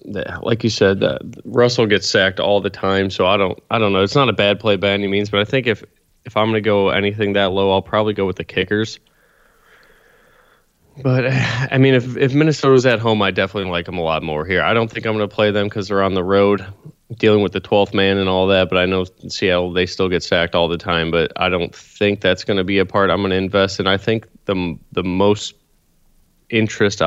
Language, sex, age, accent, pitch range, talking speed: English, male, 20-39, American, 95-110 Hz, 245 wpm